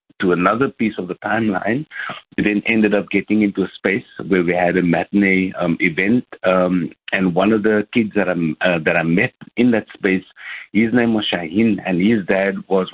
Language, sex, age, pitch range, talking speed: English, male, 50-69, 90-105 Hz, 205 wpm